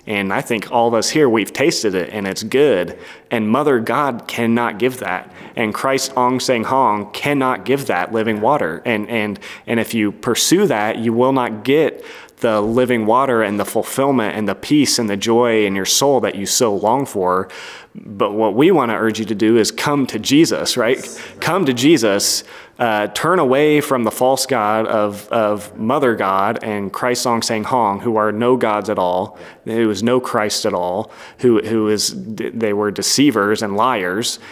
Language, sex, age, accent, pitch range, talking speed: English, male, 30-49, American, 105-125 Hz, 195 wpm